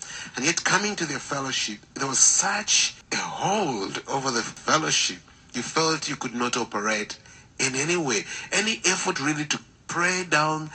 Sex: male